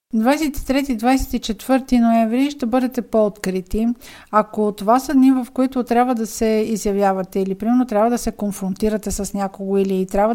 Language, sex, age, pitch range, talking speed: Bulgarian, female, 50-69, 205-240 Hz, 145 wpm